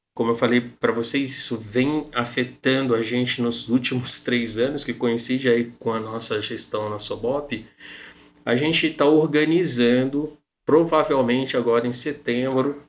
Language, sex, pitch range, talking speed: Portuguese, male, 125-150 Hz, 140 wpm